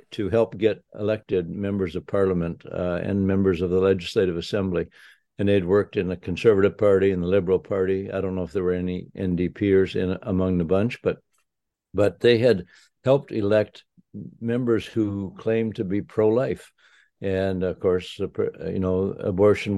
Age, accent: 60-79, American